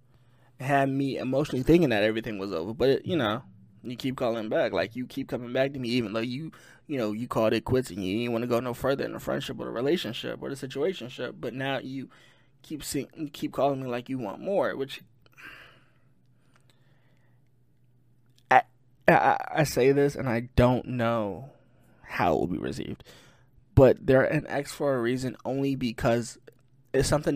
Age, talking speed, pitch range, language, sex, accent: 20-39, 195 wpm, 120-135 Hz, English, male, American